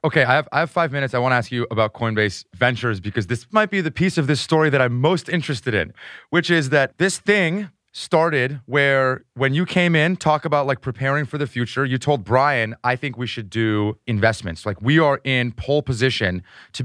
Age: 30-49